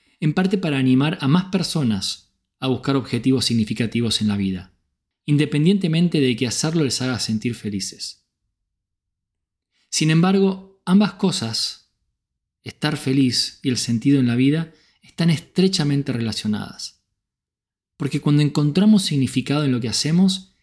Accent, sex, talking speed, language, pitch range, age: Argentinian, male, 130 wpm, Spanish, 105-145 Hz, 20-39